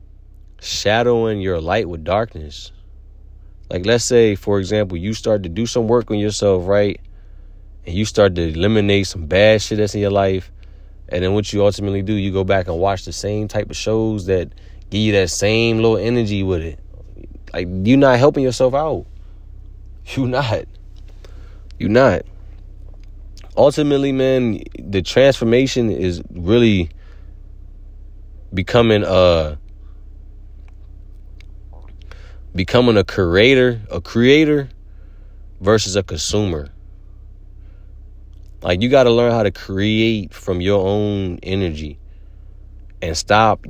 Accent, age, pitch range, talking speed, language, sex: American, 30-49, 85-105 Hz, 130 wpm, English, male